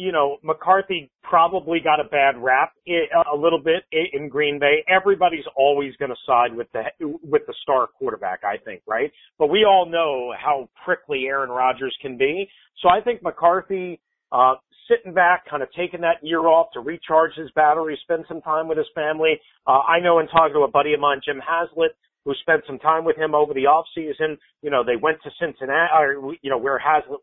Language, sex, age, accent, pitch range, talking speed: English, male, 40-59, American, 145-190 Hz, 205 wpm